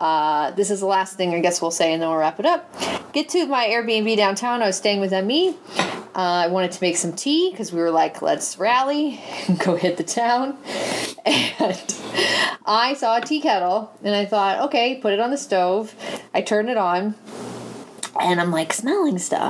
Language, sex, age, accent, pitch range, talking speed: English, female, 30-49, American, 180-240 Hz, 210 wpm